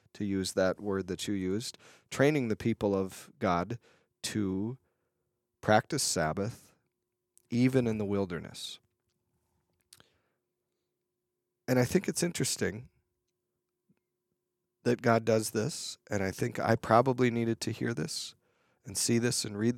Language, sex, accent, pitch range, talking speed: English, male, American, 95-120 Hz, 125 wpm